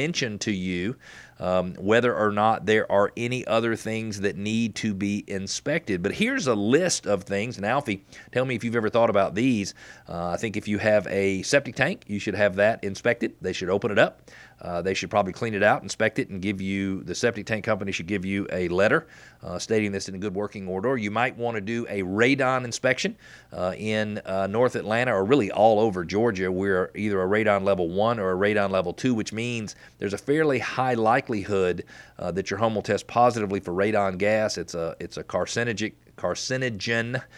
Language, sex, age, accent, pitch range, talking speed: English, male, 40-59, American, 100-120 Hz, 215 wpm